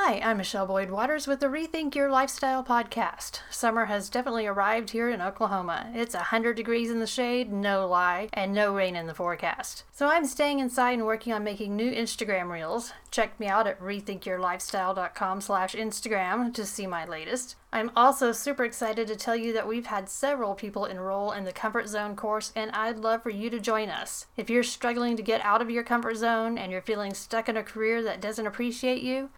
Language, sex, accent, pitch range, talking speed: English, female, American, 210-250 Hz, 200 wpm